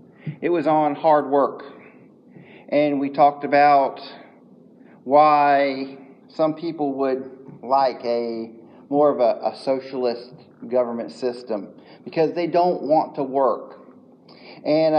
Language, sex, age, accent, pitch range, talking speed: English, male, 40-59, American, 135-200 Hz, 115 wpm